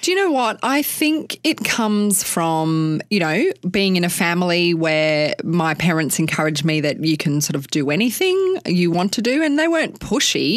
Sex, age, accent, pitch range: female, 20-39, Australian, 150-205 Hz